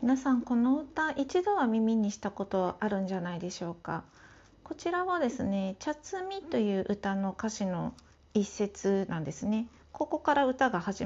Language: Japanese